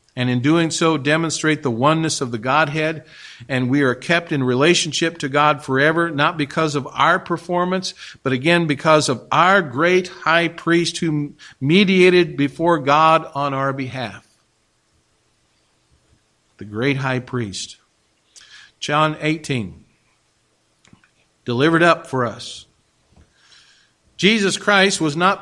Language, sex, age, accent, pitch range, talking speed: English, male, 50-69, American, 140-170 Hz, 125 wpm